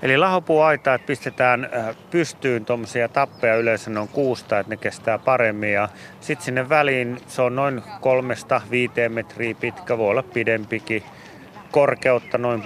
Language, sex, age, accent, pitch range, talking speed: Finnish, male, 30-49, native, 105-130 Hz, 140 wpm